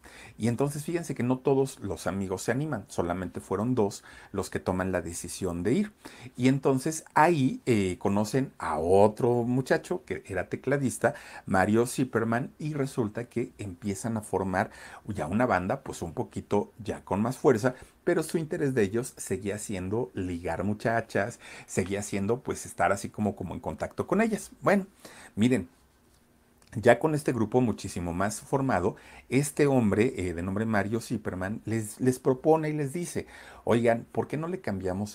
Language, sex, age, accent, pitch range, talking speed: Spanish, male, 40-59, Mexican, 95-130 Hz, 165 wpm